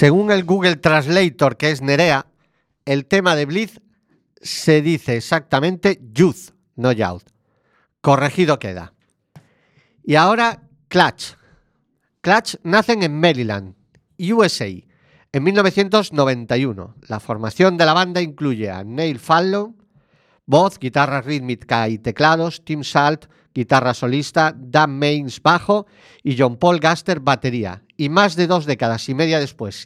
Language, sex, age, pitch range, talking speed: Spanish, male, 50-69, 125-180 Hz, 125 wpm